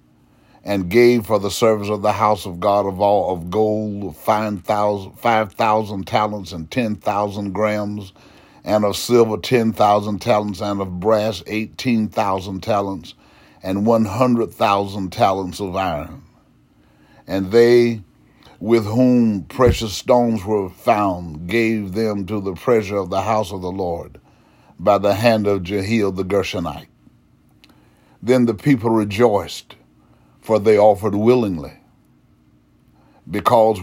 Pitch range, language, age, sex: 90-110 Hz, English, 50-69, male